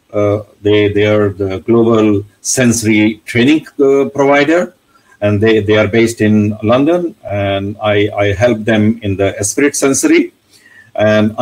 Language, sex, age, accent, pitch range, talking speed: English, male, 60-79, Indian, 105-140 Hz, 140 wpm